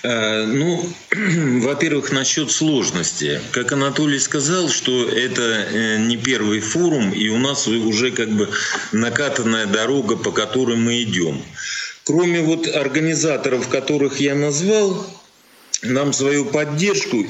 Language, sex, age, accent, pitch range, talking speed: Russian, male, 40-59, native, 115-165 Hz, 115 wpm